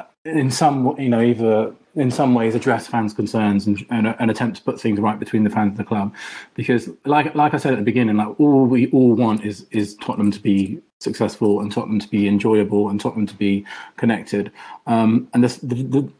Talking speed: 210 wpm